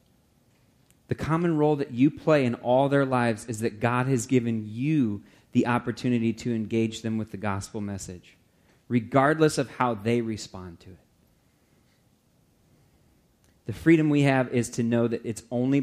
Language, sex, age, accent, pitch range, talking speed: English, male, 30-49, American, 115-145 Hz, 160 wpm